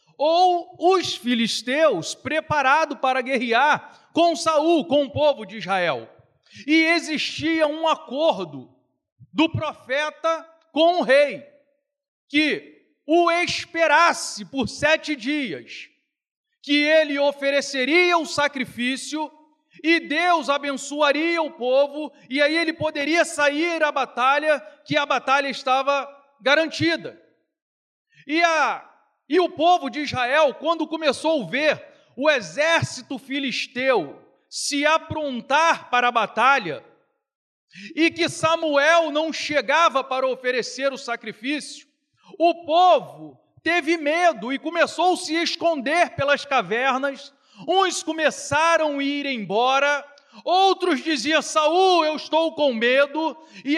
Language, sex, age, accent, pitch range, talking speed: Portuguese, male, 40-59, Brazilian, 275-325 Hz, 115 wpm